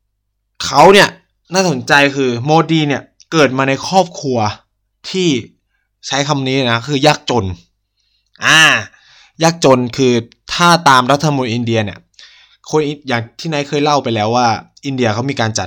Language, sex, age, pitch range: Thai, male, 20-39, 105-140 Hz